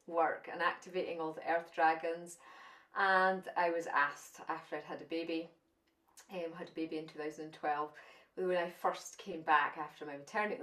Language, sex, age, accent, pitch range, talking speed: English, female, 30-49, British, 155-190 Hz, 175 wpm